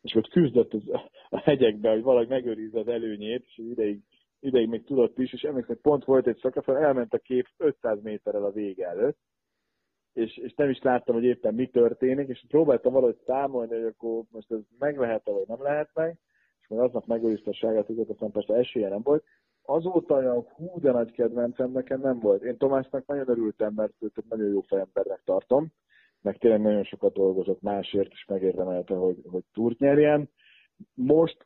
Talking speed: 185 wpm